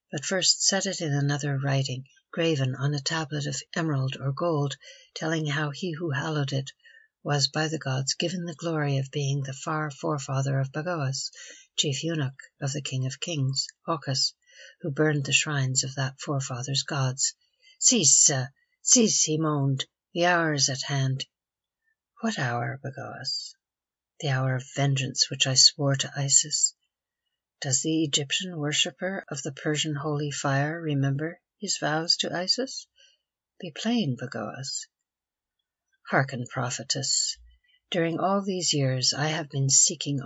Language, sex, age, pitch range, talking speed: English, female, 60-79, 135-165 Hz, 150 wpm